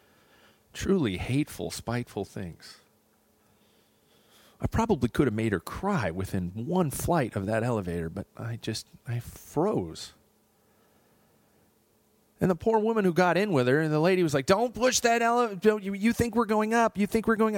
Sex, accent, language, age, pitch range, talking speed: male, American, English, 40-59, 110-185 Hz, 170 wpm